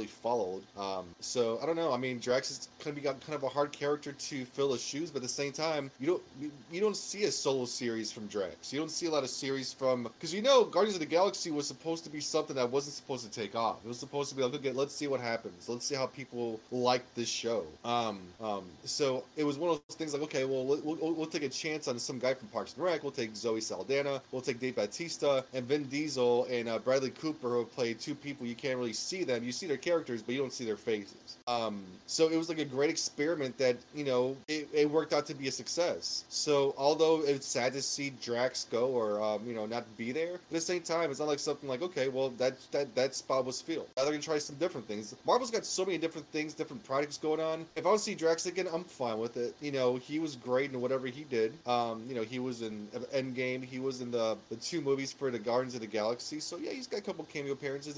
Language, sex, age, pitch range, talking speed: English, male, 20-39, 120-155 Hz, 265 wpm